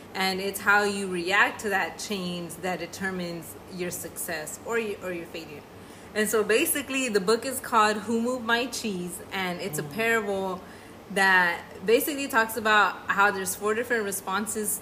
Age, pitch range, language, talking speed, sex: 20-39, 190-230 Hz, English, 165 wpm, female